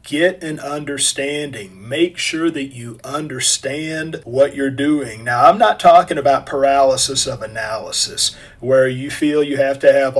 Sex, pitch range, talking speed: male, 130-155 Hz, 155 wpm